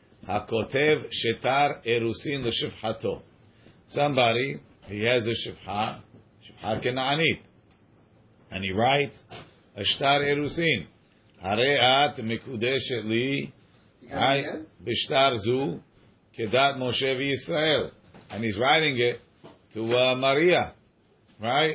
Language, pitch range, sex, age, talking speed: English, 110-140 Hz, male, 50-69, 45 wpm